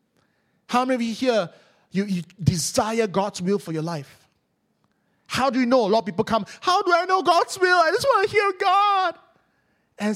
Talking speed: 205 wpm